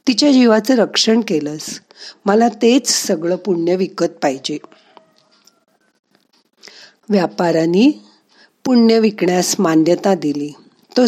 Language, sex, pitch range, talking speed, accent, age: Marathi, female, 180-230 Hz, 85 wpm, native, 50-69